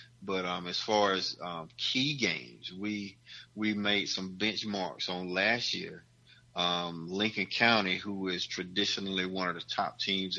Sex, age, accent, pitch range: male, 30-49, American, 95-110 Hz